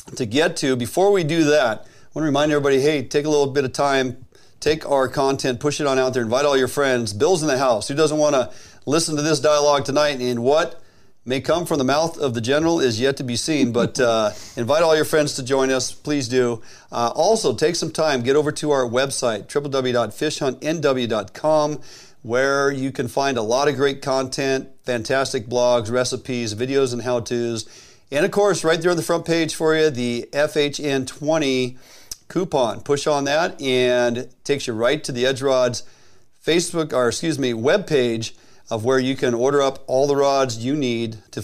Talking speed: 205 wpm